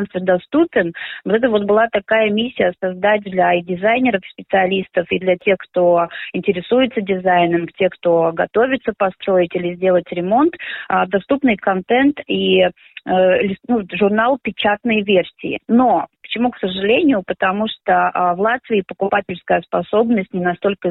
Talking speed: 130 wpm